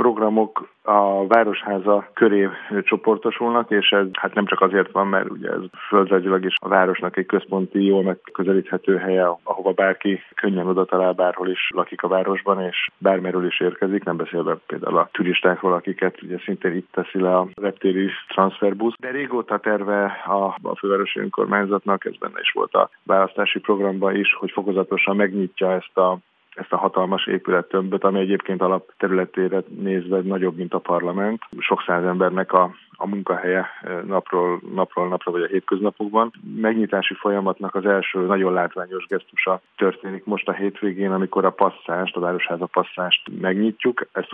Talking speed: 155 wpm